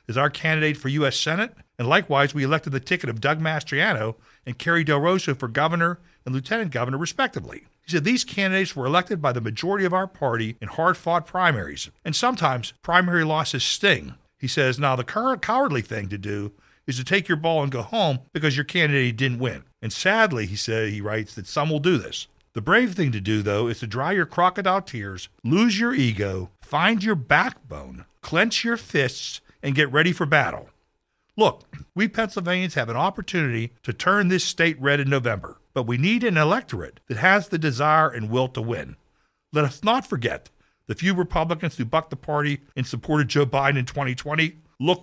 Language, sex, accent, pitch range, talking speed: English, male, American, 130-180 Hz, 195 wpm